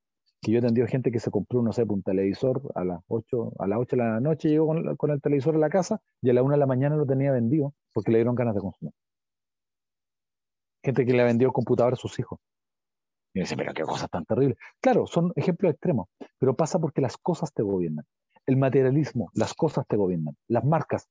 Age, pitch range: 40-59, 115-155 Hz